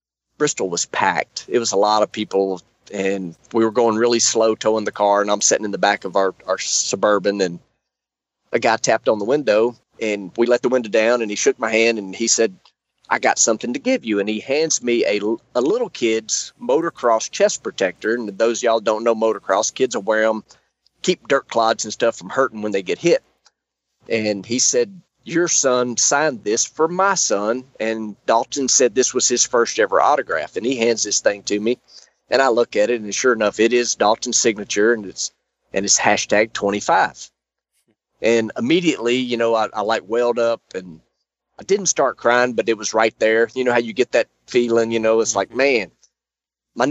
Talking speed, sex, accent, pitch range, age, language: 210 wpm, male, American, 105-120 Hz, 40-59, English